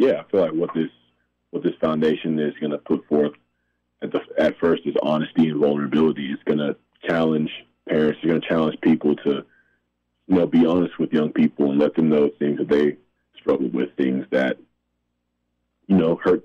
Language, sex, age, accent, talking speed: English, male, 30-49, American, 195 wpm